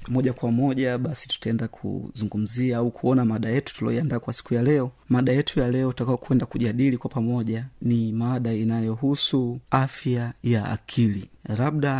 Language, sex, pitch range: Swahili, male, 115-135 Hz